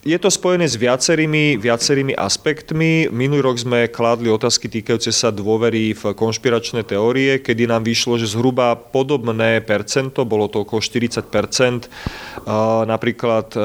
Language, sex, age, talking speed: Slovak, male, 30-49, 130 wpm